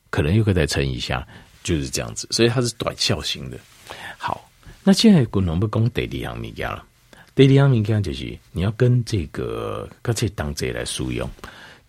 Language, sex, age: Chinese, male, 50-69